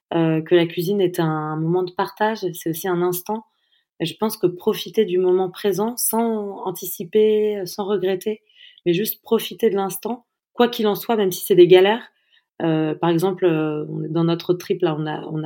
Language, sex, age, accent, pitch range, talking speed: French, female, 20-39, French, 175-225 Hz, 190 wpm